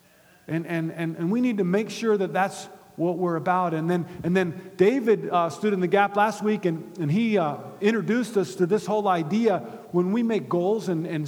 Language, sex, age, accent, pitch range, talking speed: English, male, 50-69, American, 165-210 Hz, 225 wpm